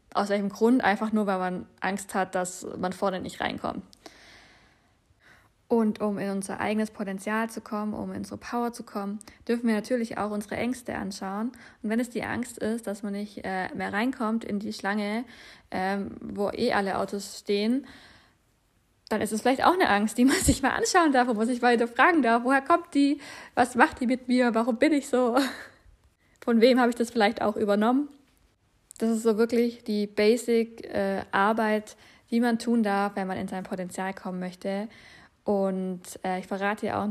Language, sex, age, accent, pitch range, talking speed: German, female, 20-39, German, 200-250 Hz, 195 wpm